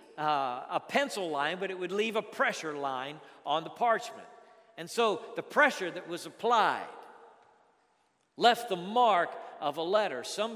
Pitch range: 170-235 Hz